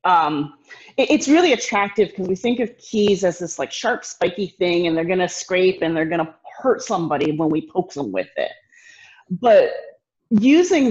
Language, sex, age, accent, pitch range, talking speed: English, female, 30-49, American, 175-230 Hz, 185 wpm